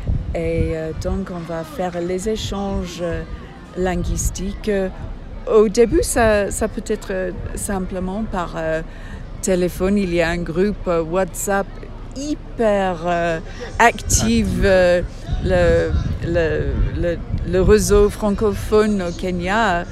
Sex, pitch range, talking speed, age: female, 115-190 Hz, 90 wpm, 50-69